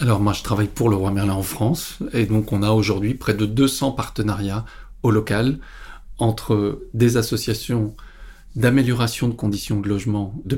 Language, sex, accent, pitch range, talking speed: French, male, French, 105-125 Hz, 170 wpm